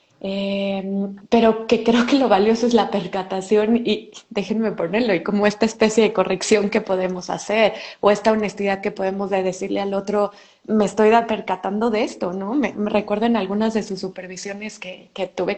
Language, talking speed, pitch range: Spanish, 185 wpm, 195-260 Hz